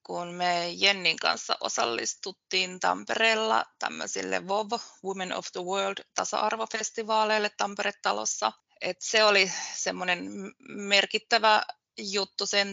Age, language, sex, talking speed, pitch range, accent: 20-39, Finnish, female, 95 wpm, 180-220 Hz, native